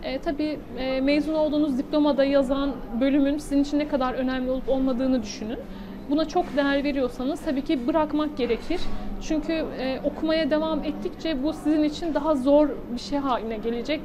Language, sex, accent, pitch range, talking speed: Turkish, female, native, 255-305 Hz, 160 wpm